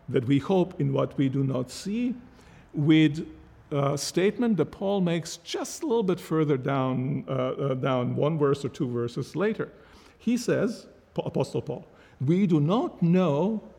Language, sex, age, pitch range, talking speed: English, male, 50-69, 135-190 Hz, 165 wpm